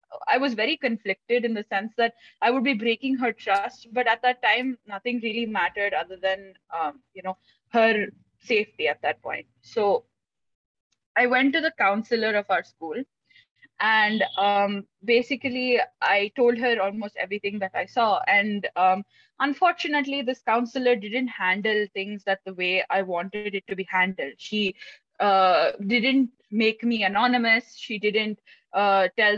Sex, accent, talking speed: female, Indian, 160 wpm